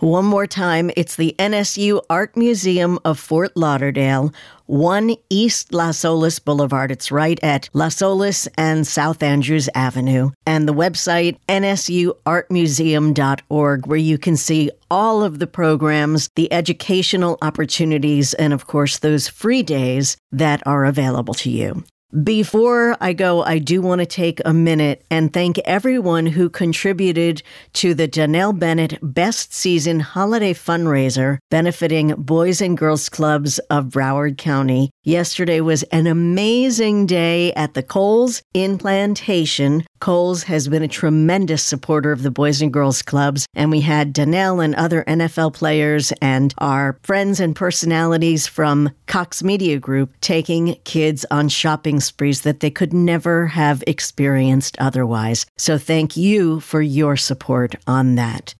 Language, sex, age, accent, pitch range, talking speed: English, female, 50-69, American, 145-175 Hz, 145 wpm